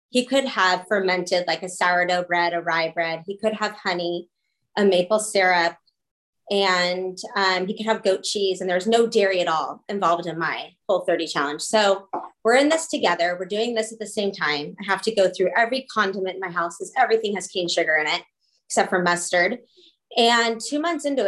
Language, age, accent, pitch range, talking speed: English, 20-39, American, 175-220 Hz, 205 wpm